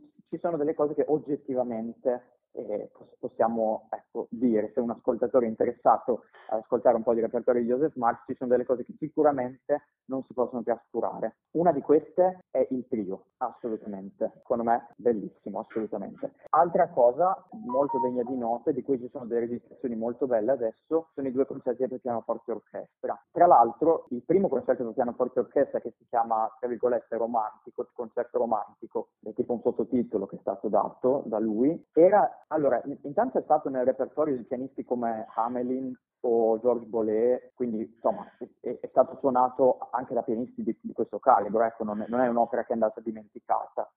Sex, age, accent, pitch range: male, 20-39, native, 115-140 Hz